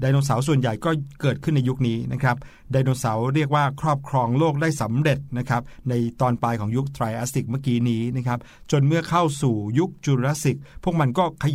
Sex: male